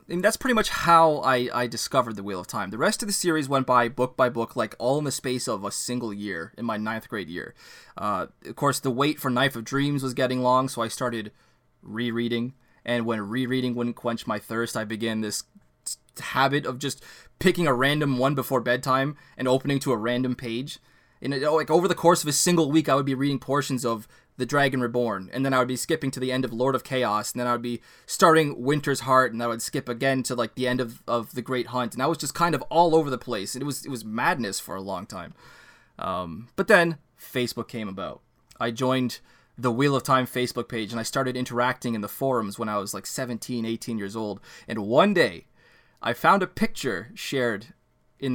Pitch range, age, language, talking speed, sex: 120-140 Hz, 20-39, English, 235 wpm, male